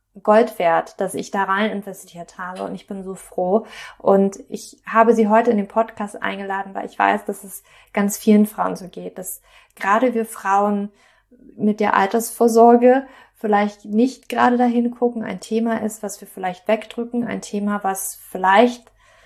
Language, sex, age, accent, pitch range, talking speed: German, female, 30-49, German, 195-230 Hz, 170 wpm